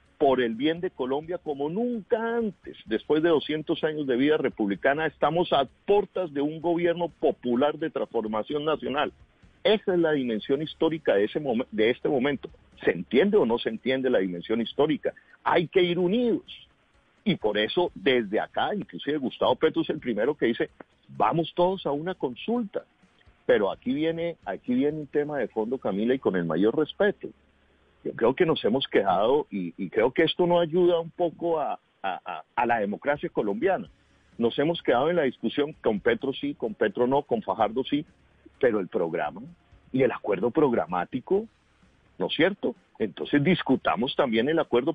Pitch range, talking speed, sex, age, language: 130-180 Hz, 170 wpm, male, 50-69, Spanish